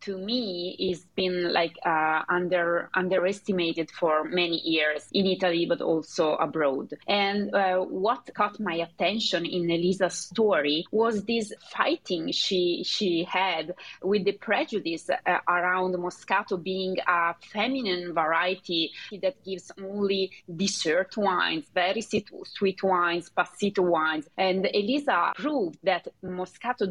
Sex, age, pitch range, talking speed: female, 20-39, 170-195 Hz, 125 wpm